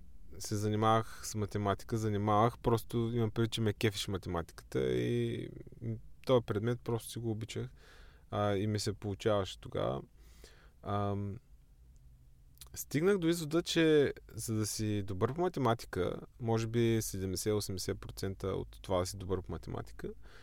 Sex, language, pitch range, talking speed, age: male, Bulgarian, 100-135 Hz, 130 wpm, 20-39